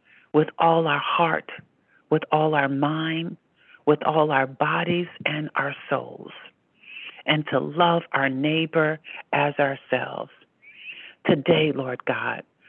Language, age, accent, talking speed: English, 50-69, American, 120 wpm